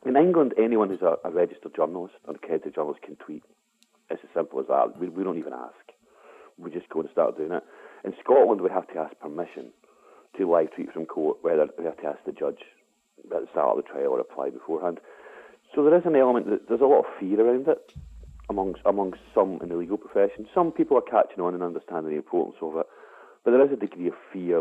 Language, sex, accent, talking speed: English, male, British, 235 wpm